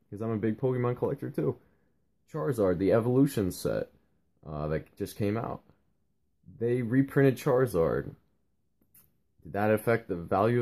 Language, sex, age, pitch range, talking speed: English, male, 20-39, 90-125 Hz, 135 wpm